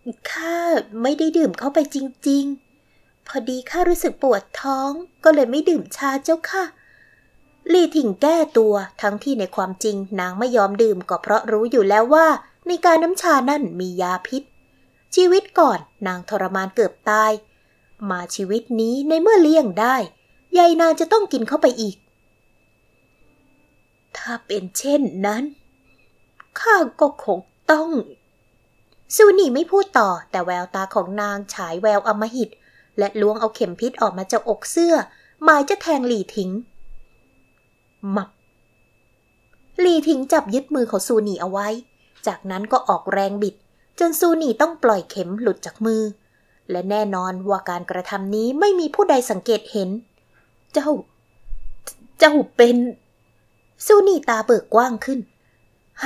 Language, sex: Thai, female